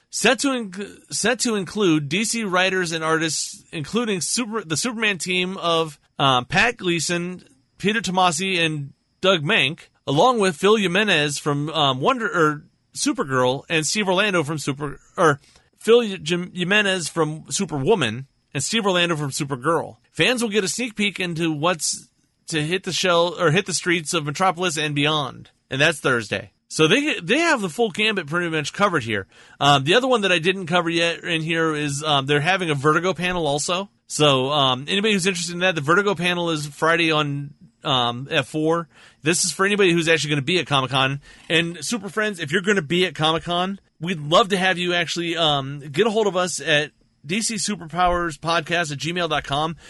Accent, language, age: American, English, 40-59